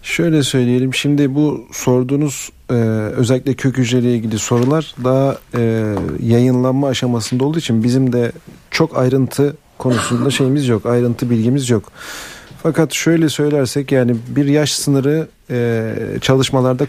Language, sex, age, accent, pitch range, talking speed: Turkish, male, 40-59, native, 120-145 Hz, 115 wpm